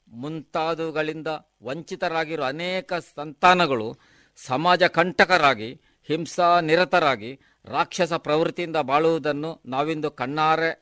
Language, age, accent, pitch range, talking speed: Kannada, 50-69, native, 145-175 Hz, 70 wpm